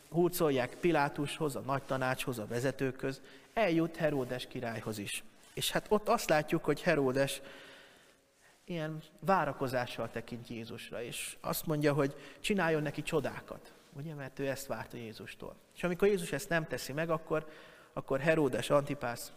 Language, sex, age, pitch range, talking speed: Hungarian, male, 30-49, 125-155 Hz, 145 wpm